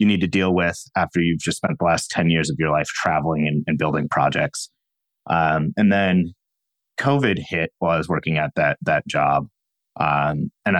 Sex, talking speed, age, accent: male, 200 wpm, 30-49, American